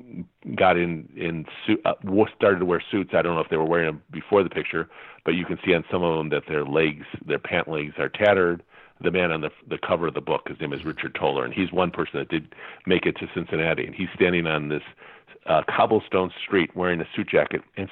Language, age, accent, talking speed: English, 50-69, American, 240 wpm